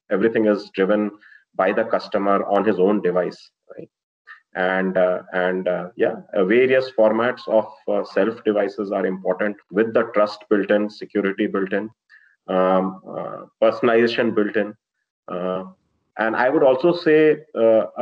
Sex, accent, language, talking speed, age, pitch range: male, Indian, English, 150 wpm, 30-49, 100-125 Hz